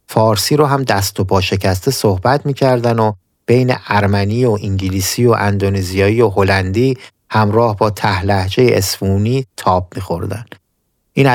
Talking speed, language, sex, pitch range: 130 wpm, Persian, male, 100-120 Hz